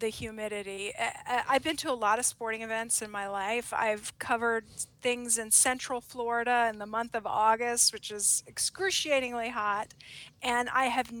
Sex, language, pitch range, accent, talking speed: female, English, 215-245 Hz, American, 165 wpm